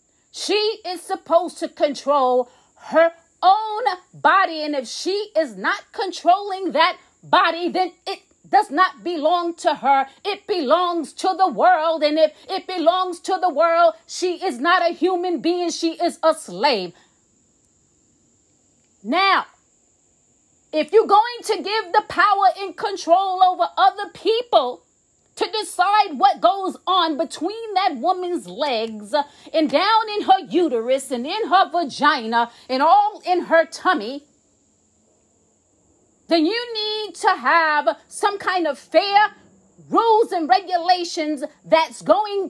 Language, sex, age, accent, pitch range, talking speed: English, female, 40-59, American, 315-385 Hz, 135 wpm